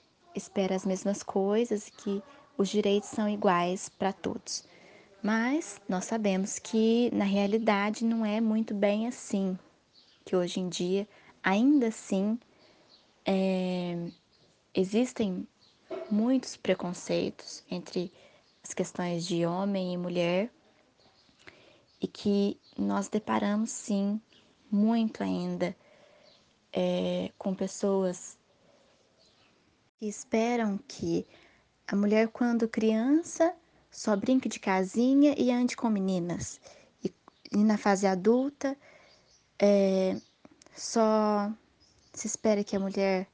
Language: Portuguese